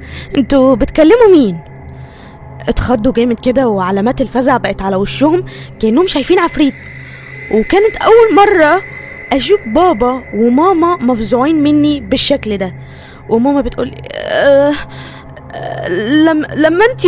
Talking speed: 110 wpm